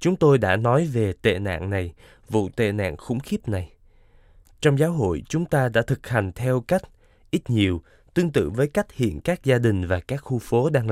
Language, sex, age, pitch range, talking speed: Vietnamese, male, 20-39, 100-140 Hz, 215 wpm